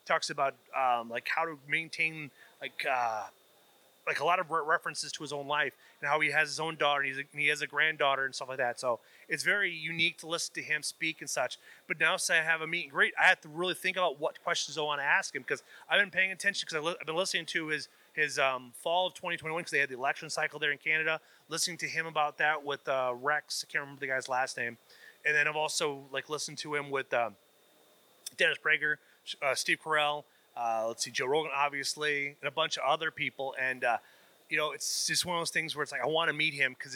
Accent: American